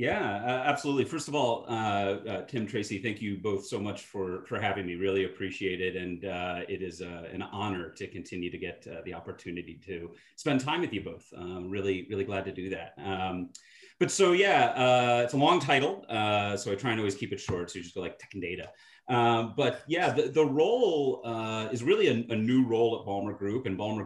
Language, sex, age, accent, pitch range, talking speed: English, male, 30-49, American, 95-115 Hz, 235 wpm